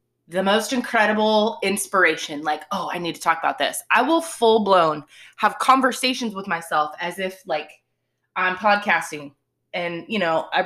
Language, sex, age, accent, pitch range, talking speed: English, female, 20-39, American, 175-270 Hz, 170 wpm